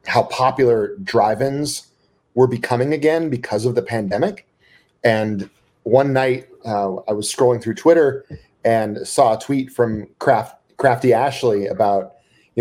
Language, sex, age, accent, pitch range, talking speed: English, male, 40-59, American, 115-145 Hz, 140 wpm